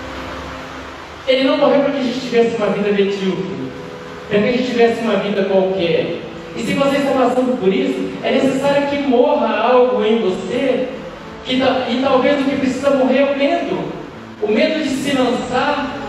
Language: Portuguese